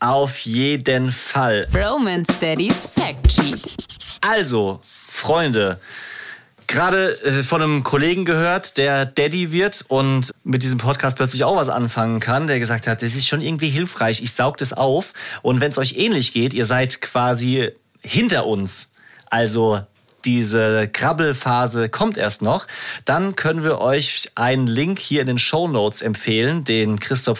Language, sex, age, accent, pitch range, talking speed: German, male, 30-49, German, 120-155 Hz, 140 wpm